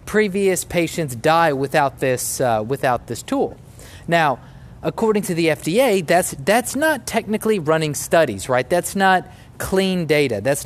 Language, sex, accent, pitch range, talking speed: English, male, American, 130-170 Hz, 145 wpm